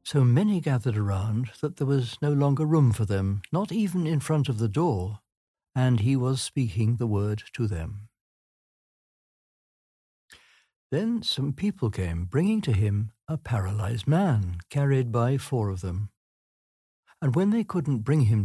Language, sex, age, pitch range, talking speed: English, male, 60-79, 105-145 Hz, 155 wpm